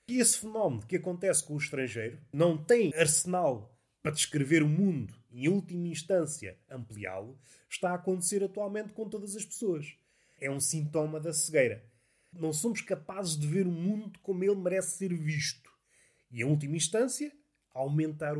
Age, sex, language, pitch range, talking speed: 30-49, male, Portuguese, 130-195 Hz, 165 wpm